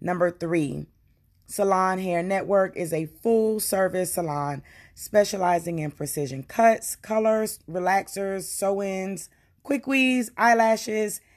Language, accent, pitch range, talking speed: English, American, 135-190 Hz, 95 wpm